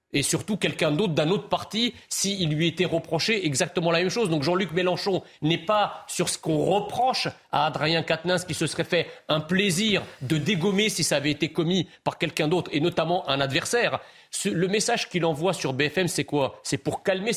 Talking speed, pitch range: 210 wpm, 155-190 Hz